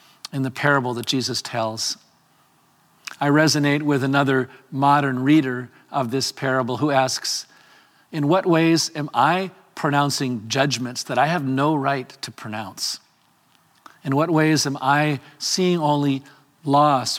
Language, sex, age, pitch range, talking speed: English, male, 50-69, 130-155 Hz, 135 wpm